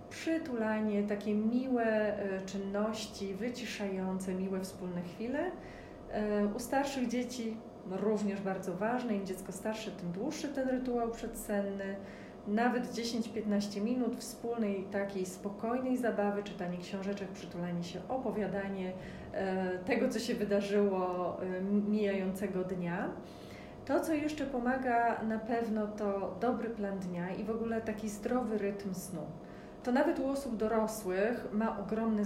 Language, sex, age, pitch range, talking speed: Polish, female, 30-49, 195-235 Hz, 120 wpm